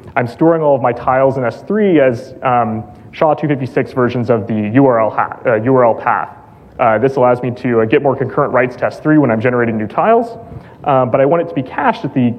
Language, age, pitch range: English, 20-39, 120-140 Hz